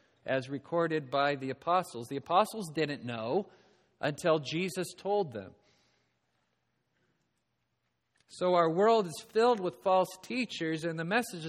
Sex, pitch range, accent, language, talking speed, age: male, 125-190 Hz, American, English, 125 wpm, 40-59